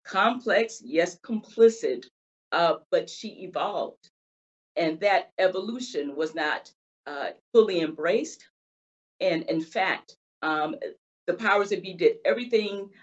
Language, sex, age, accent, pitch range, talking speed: English, female, 40-59, American, 160-245 Hz, 115 wpm